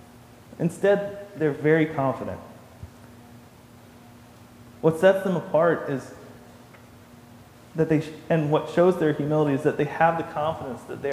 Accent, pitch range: American, 120-155 Hz